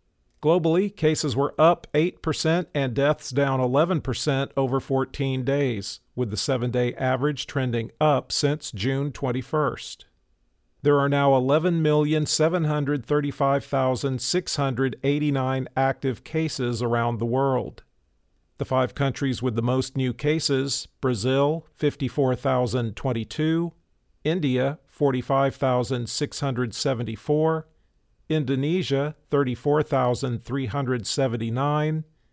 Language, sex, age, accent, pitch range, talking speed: English, male, 50-69, American, 125-150 Hz, 80 wpm